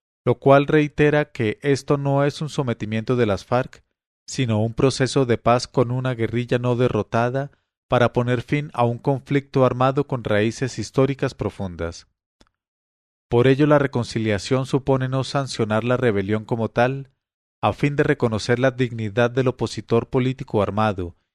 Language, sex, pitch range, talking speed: English, male, 105-135 Hz, 150 wpm